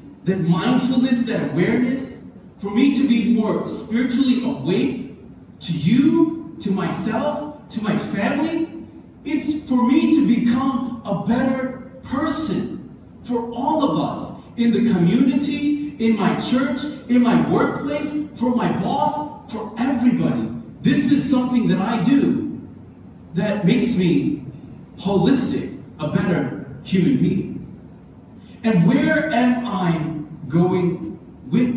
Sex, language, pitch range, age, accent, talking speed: male, English, 200-265 Hz, 40-59, American, 120 wpm